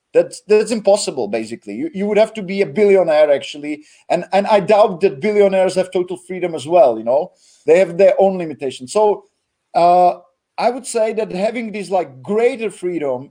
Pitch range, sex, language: 180-210 Hz, male, Czech